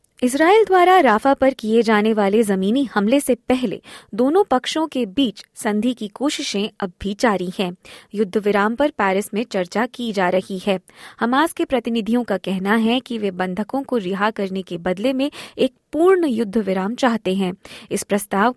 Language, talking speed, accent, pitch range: Hindi, 180 wpm, native, 210-265 Hz